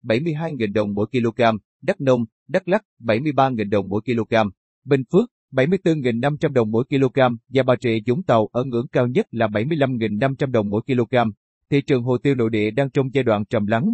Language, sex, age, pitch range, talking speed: Vietnamese, male, 30-49, 115-145 Hz, 190 wpm